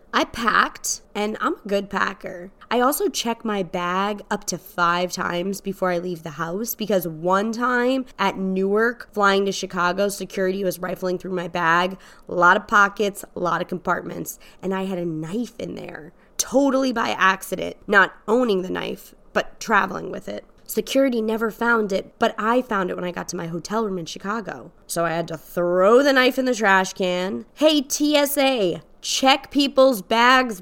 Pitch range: 180-235 Hz